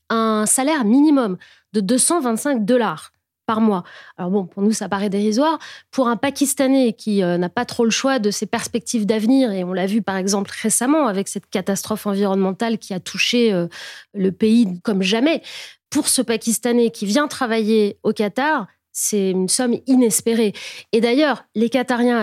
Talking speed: 165 wpm